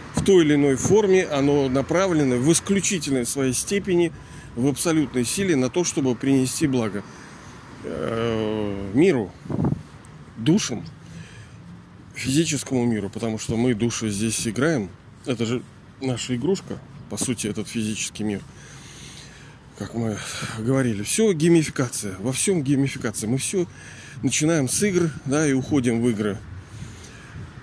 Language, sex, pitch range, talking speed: Russian, male, 115-150 Hz, 120 wpm